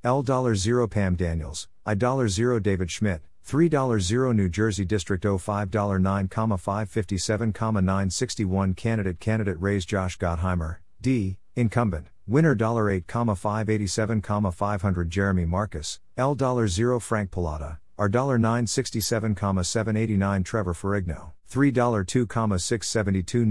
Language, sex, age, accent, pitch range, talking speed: English, male, 50-69, American, 95-115 Hz, 95 wpm